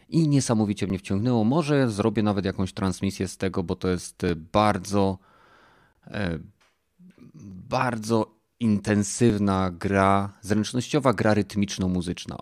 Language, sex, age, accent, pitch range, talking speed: Polish, male, 30-49, native, 90-100 Hz, 100 wpm